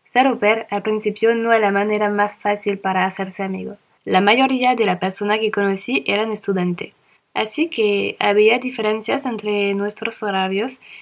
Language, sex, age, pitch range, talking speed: Spanish, female, 20-39, 205-230 Hz, 160 wpm